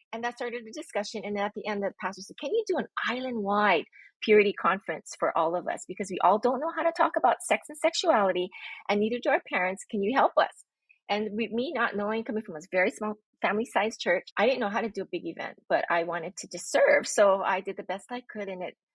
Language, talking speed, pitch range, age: English, 250 wpm, 195-260 Hz, 30-49